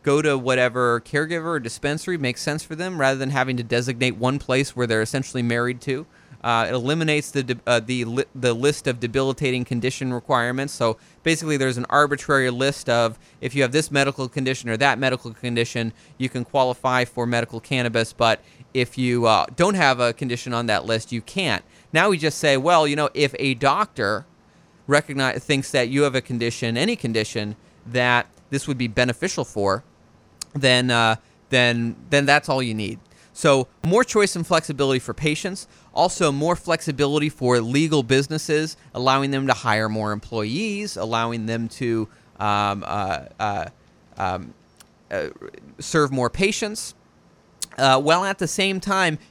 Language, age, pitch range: English, 30-49, 120-150 Hz